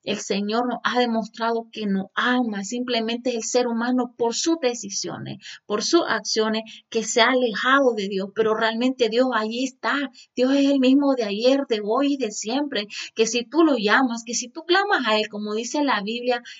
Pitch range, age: 215-270 Hz, 30-49